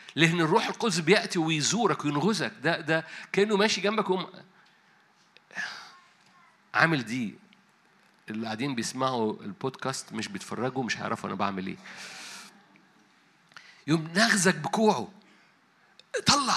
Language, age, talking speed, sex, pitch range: Arabic, 50-69, 105 wpm, male, 125-190 Hz